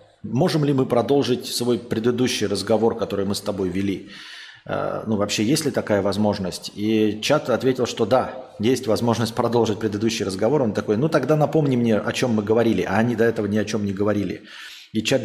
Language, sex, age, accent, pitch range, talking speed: Russian, male, 20-39, native, 100-120 Hz, 195 wpm